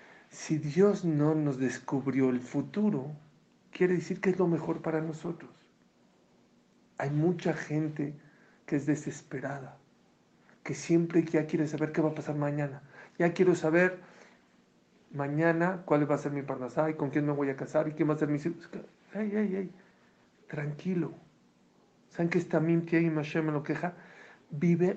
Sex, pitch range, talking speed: male, 135-165 Hz, 165 wpm